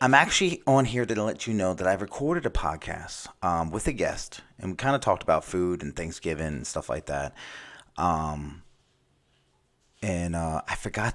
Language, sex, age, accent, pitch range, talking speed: English, male, 30-49, American, 90-130 Hz, 190 wpm